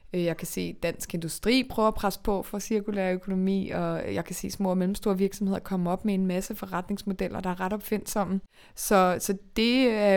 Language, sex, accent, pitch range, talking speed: Danish, female, native, 180-205 Hz, 200 wpm